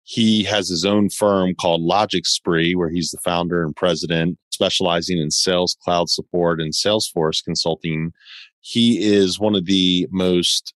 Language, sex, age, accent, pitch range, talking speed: English, male, 30-49, American, 85-95 Hz, 155 wpm